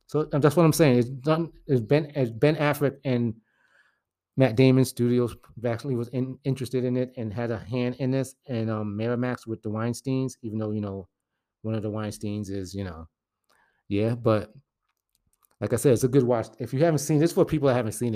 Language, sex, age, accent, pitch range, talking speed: English, male, 30-49, American, 110-130 Hz, 210 wpm